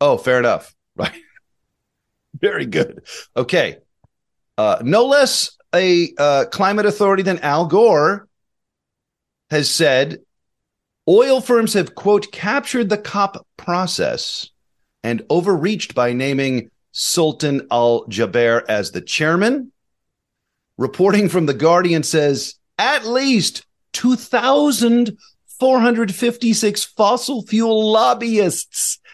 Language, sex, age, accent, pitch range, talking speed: English, male, 40-59, American, 140-210 Hz, 100 wpm